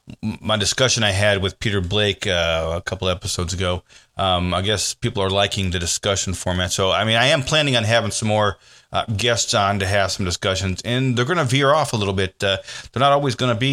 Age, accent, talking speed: 30-49, American, 240 wpm